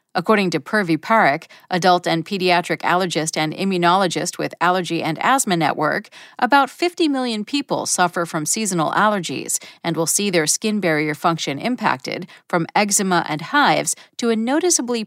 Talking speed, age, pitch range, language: 150 wpm, 40-59, 170-245 Hz, English